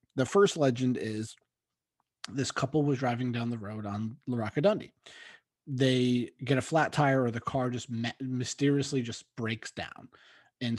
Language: English